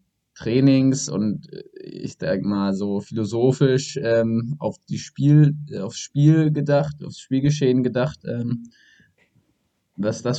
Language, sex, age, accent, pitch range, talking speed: German, male, 20-39, German, 110-135 Hz, 115 wpm